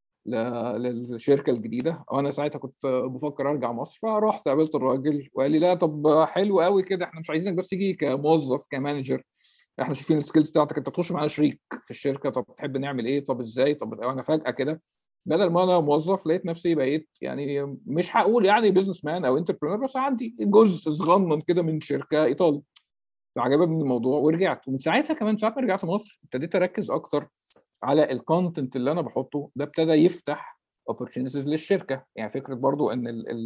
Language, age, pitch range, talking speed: Arabic, 50-69, 130-165 Hz, 170 wpm